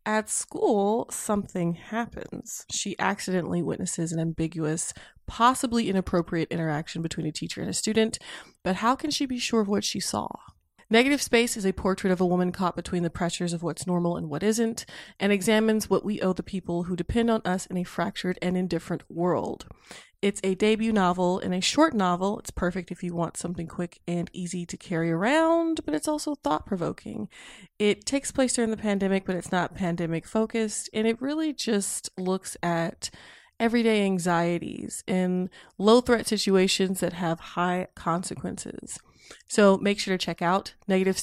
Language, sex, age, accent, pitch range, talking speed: English, female, 20-39, American, 175-220 Hz, 180 wpm